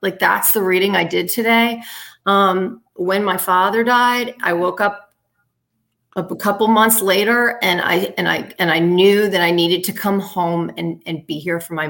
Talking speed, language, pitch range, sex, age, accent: 195 wpm, English, 175-225 Hz, female, 40-59, American